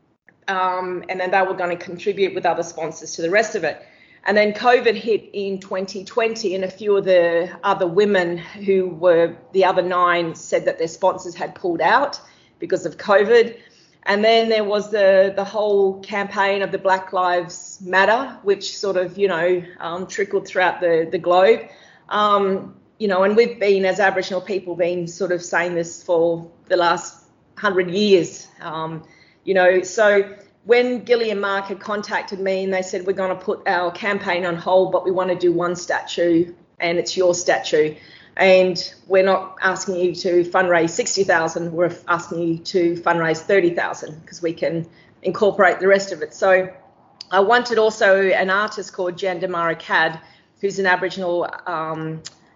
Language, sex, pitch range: English, female, 175-195 Hz